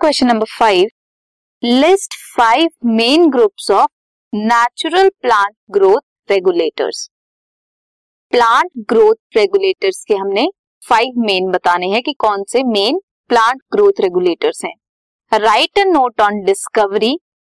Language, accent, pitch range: Hindi, native, 215-360 Hz